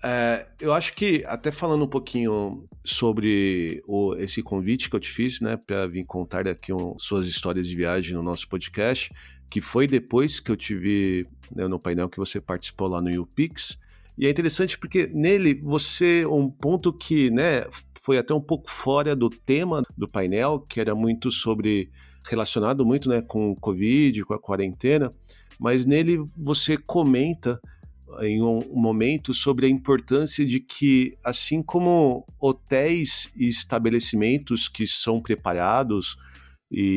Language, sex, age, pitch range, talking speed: Portuguese, male, 50-69, 100-150 Hz, 155 wpm